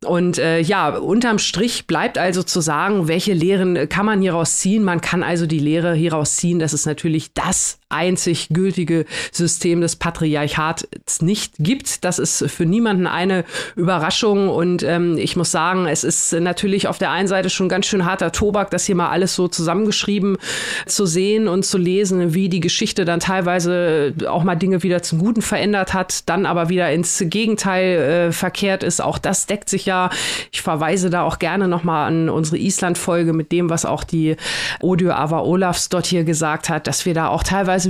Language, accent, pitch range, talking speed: German, German, 165-190 Hz, 190 wpm